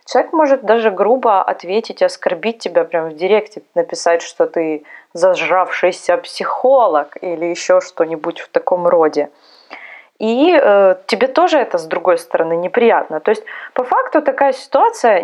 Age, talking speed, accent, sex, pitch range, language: 20-39, 140 wpm, native, female, 180-250 Hz, Russian